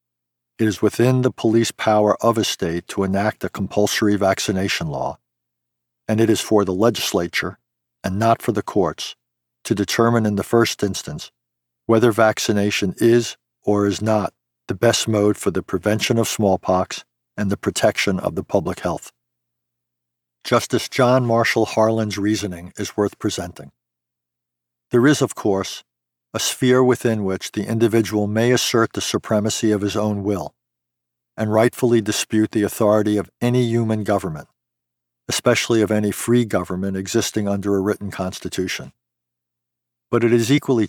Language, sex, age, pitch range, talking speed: English, male, 50-69, 70-110 Hz, 150 wpm